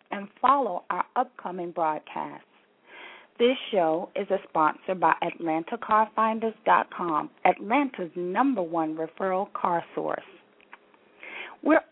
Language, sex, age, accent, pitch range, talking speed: English, female, 40-59, American, 175-265 Hz, 95 wpm